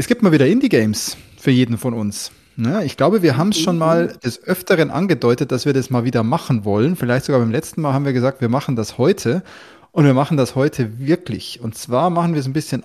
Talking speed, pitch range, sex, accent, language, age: 240 wpm, 125-165 Hz, male, German, German, 20-39